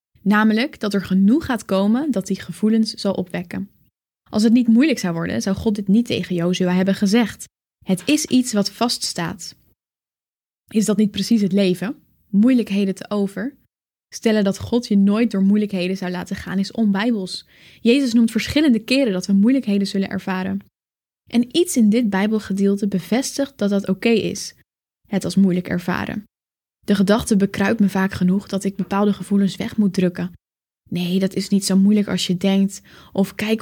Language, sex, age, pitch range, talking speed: Dutch, female, 10-29, 195-230 Hz, 175 wpm